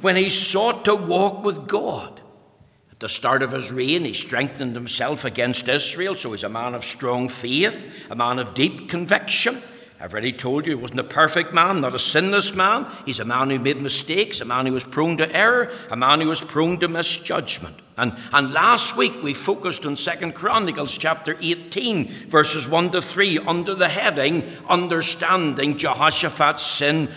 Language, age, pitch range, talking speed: English, 60-79, 140-195 Hz, 185 wpm